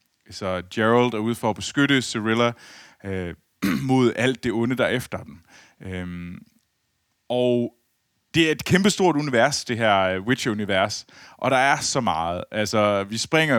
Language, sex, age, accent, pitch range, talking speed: Danish, male, 20-39, native, 105-140 Hz, 160 wpm